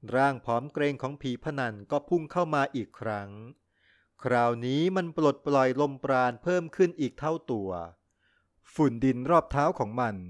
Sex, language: male, Thai